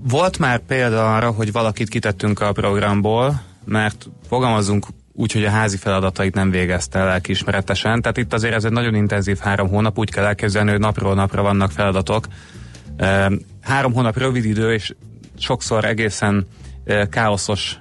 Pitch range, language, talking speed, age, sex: 100-115 Hz, Hungarian, 145 wpm, 30-49, male